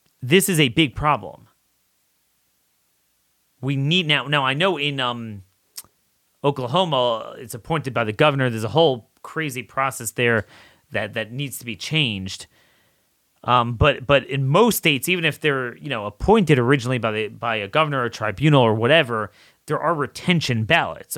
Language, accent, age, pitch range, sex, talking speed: English, American, 30-49, 115-140 Hz, male, 160 wpm